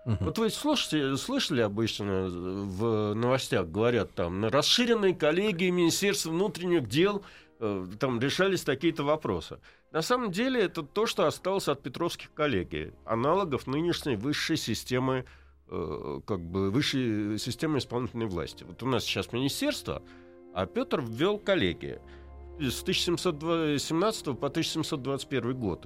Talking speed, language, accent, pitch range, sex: 125 wpm, Russian, native, 105-170 Hz, male